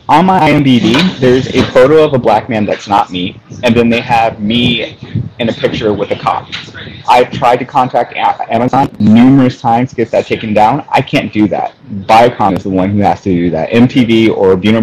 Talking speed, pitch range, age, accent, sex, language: 210 wpm, 105-140 Hz, 30-49, American, male, English